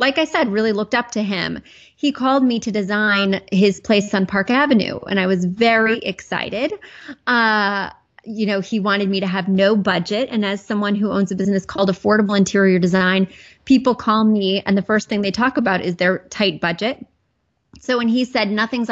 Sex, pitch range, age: female, 195-220 Hz, 30-49